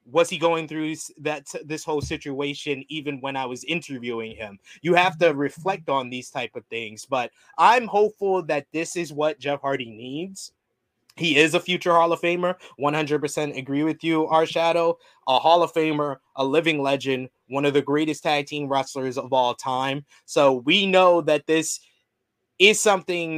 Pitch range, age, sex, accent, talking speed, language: 130-165 Hz, 20-39, male, American, 180 wpm, English